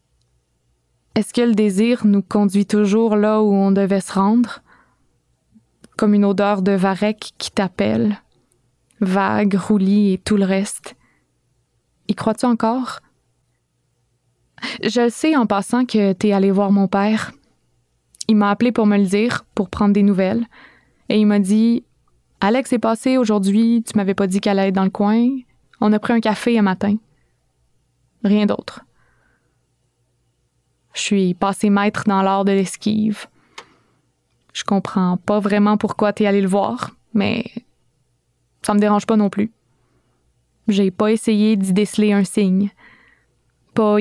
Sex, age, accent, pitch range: female, 20-39, Canadian, 195-215 Hz